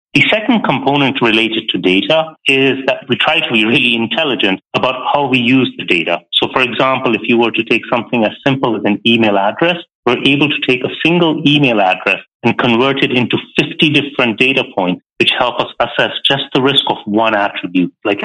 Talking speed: 205 wpm